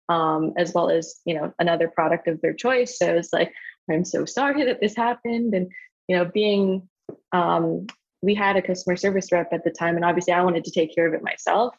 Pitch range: 170-205 Hz